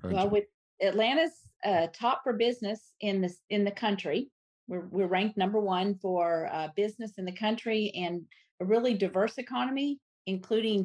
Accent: American